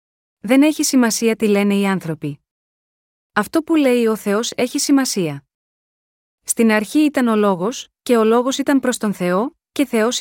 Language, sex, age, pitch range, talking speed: Greek, female, 20-39, 205-255 Hz, 165 wpm